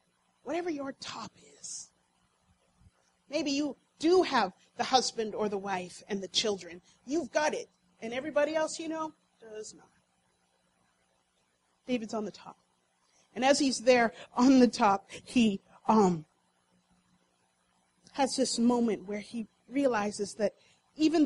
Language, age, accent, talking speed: English, 40-59, American, 135 wpm